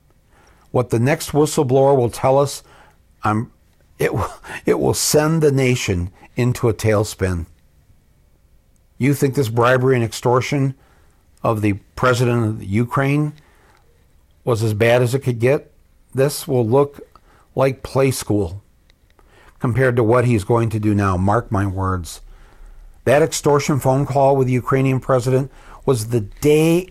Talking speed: 145 wpm